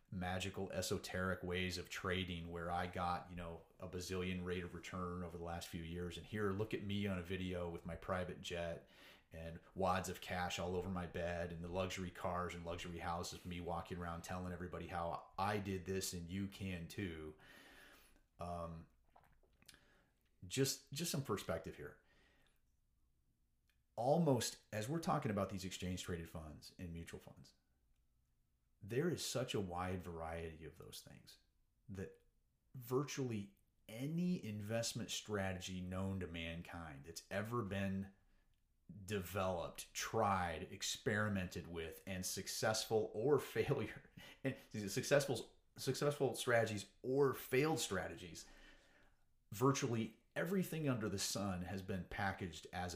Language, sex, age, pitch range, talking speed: English, male, 30-49, 85-105 Hz, 140 wpm